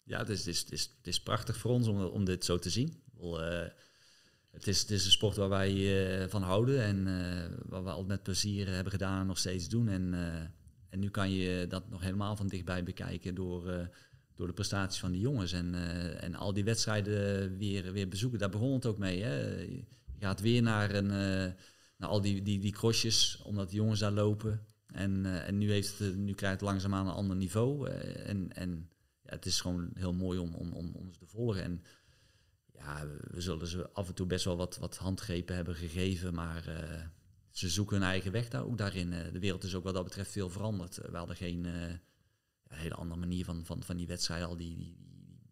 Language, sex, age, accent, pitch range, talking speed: Dutch, male, 50-69, Dutch, 90-105 Hz, 225 wpm